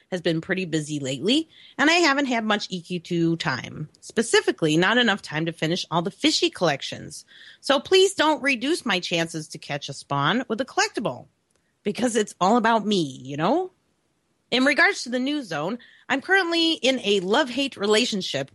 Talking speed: 175 wpm